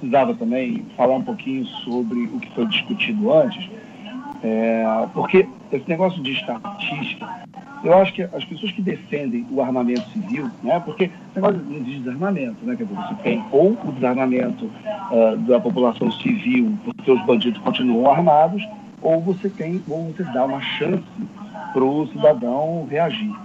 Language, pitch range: Portuguese, 155-235 Hz